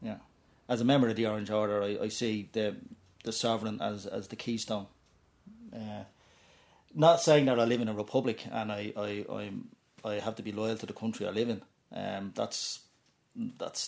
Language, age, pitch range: English, 30-49, 105-125 Hz